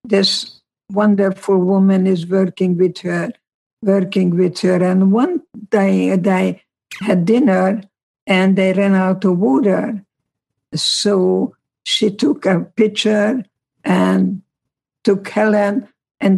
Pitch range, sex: 185-205 Hz, female